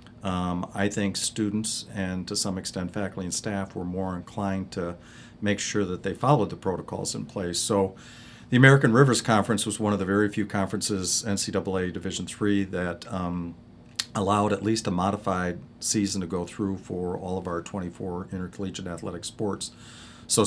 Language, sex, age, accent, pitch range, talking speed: English, male, 50-69, American, 90-105 Hz, 175 wpm